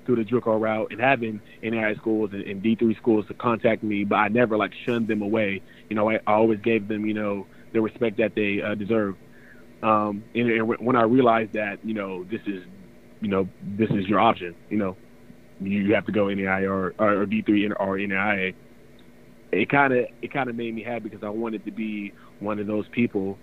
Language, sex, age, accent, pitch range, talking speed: English, male, 20-39, American, 100-115 Hz, 225 wpm